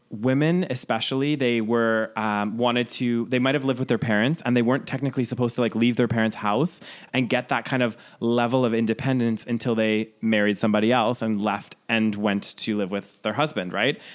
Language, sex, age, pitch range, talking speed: English, male, 20-39, 110-130 Hz, 200 wpm